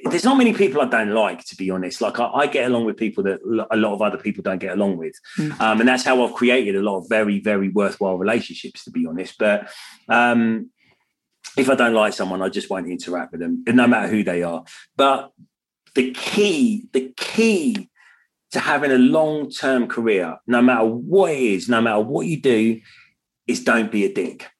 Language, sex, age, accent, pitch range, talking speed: English, male, 30-49, British, 105-155 Hz, 210 wpm